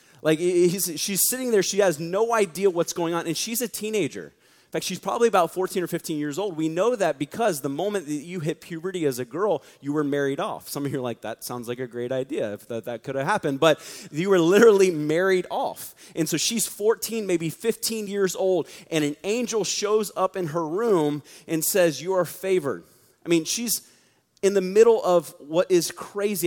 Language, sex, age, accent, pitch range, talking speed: English, male, 30-49, American, 150-190 Hz, 215 wpm